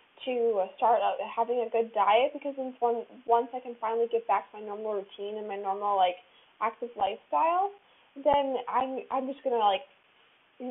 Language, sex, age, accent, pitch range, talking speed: English, female, 20-39, American, 235-295 Hz, 175 wpm